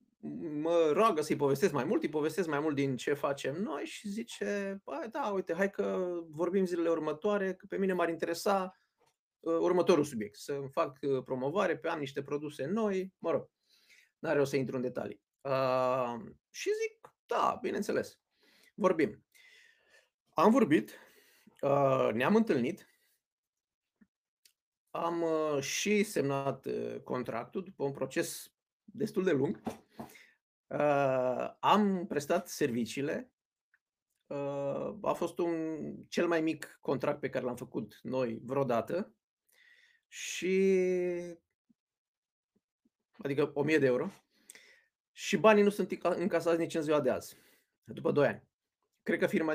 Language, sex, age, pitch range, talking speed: Romanian, male, 30-49, 140-195 Hz, 130 wpm